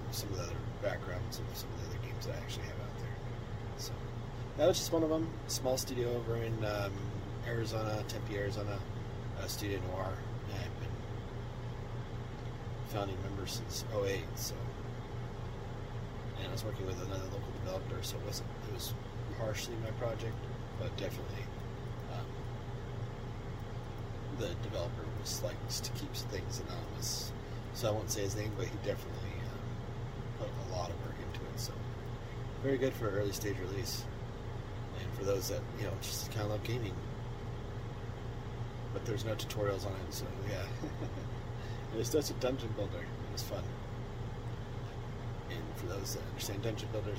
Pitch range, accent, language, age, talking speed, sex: 110-120 Hz, American, English, 30-49, 160 wpm, male